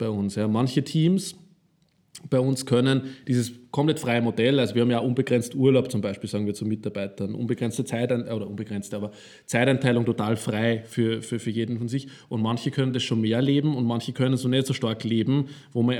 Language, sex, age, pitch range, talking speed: German, male, 20-39, 115-130 Hz, 195 wpm